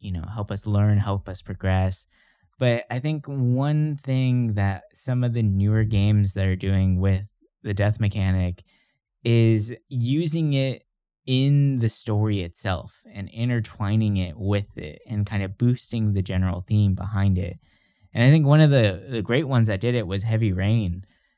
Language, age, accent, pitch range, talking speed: English, 20-39, American, 100-130 Hz, 175 wpm